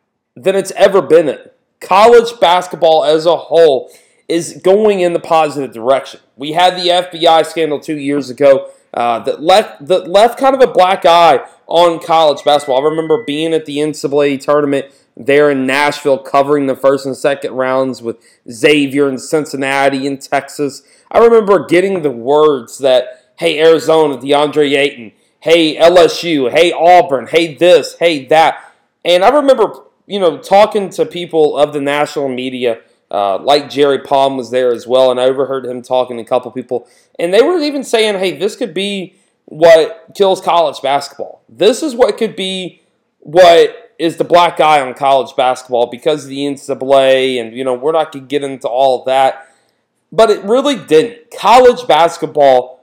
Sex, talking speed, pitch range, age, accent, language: male, 175 wpm, 135-180 Hz, 30-49, American, English